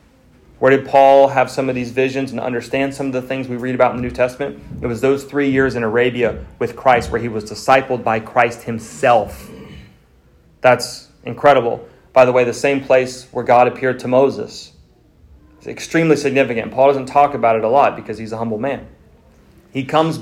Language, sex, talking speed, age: English, male, 200 wpm, 30-49